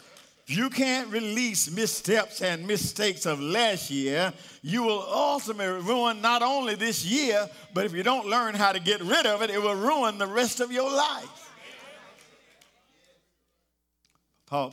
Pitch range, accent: 140-210 Hz, American